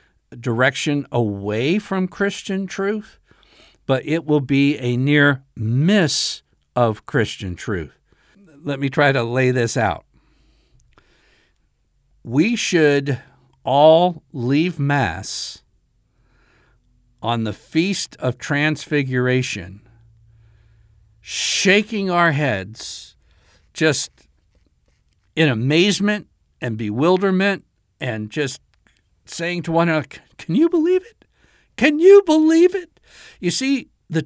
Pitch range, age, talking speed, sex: 115-175 Hz, 60-79, 100 wpm, male